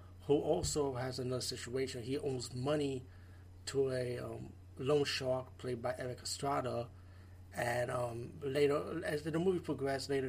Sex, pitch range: male, 100-130 Hz